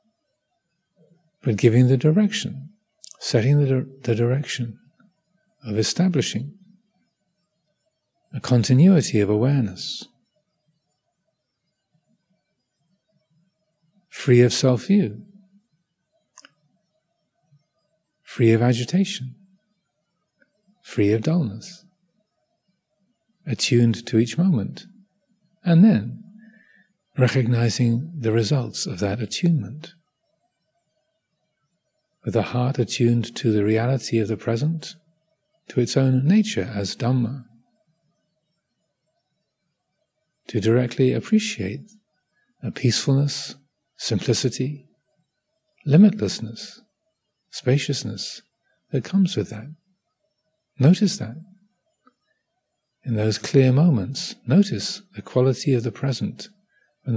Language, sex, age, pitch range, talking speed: English, male, 50-69, 120-190 Hz, 80 wpm